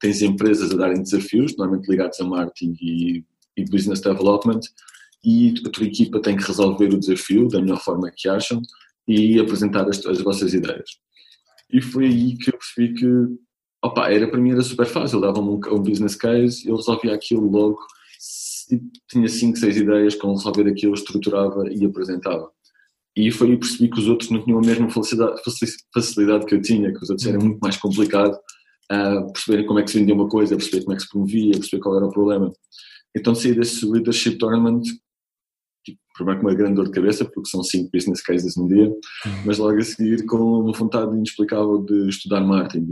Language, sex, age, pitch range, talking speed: Portuguese, male, 20-39, 95-115 Hz, 205 wpm